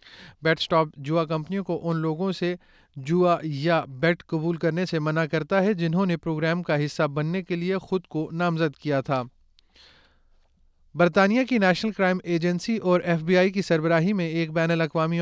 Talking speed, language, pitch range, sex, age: 175 wpm, Urdu, 160-180 Hz, male, 30-49